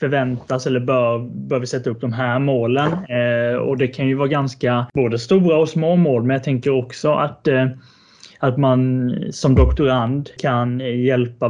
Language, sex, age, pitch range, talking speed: Swedish, male, 20-39, 120-135 Hz, 180 wpm